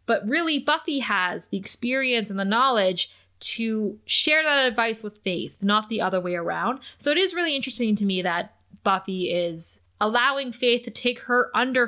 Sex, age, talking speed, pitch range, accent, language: female, 20-39, 180 wpm, 195-245 Hz, American, English